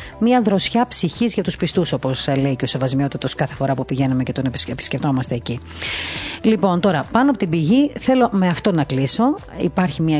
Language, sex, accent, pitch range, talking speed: Greek, female, native, 135-175 Hz, 195 wpm